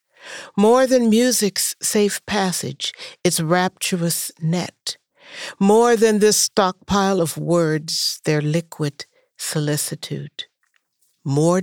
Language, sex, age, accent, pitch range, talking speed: English, female, 60-79, American, 150-210 Hz, 95 wpm